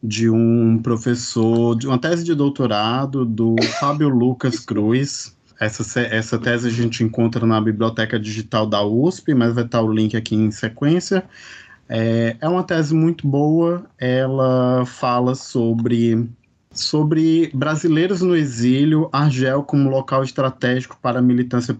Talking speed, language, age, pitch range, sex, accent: 140 wpm, Portuguese, 20-39, 115-140 Hz, male, Brazilian